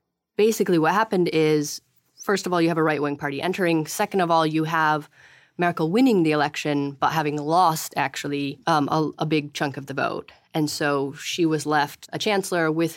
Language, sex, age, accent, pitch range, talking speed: English, female, 30-49, American, 145-170 Hz, 195 wpm